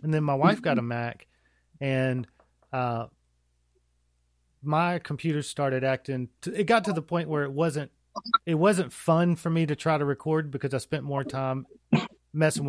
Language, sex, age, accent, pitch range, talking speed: English, male, 40-59, American, 135-165 Hz, 175 wpm